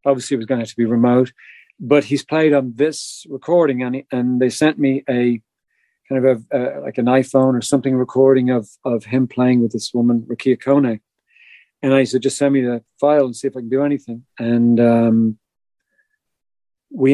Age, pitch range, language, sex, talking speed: 50-69, 120-140 Hz, English, male, 205 wpm